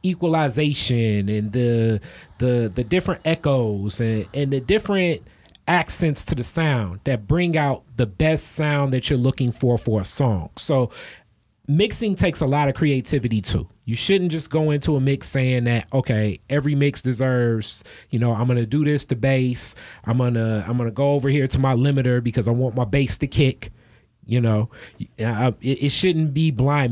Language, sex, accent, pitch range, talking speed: English, male, American, 120-145 Hz, 185 wpm